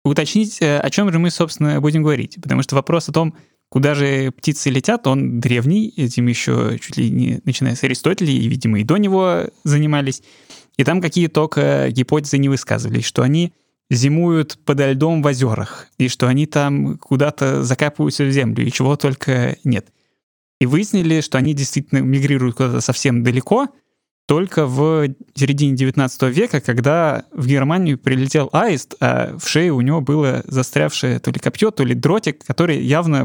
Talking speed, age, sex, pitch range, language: 170 wpm, 20-39, male, 130-155 Hz, Russian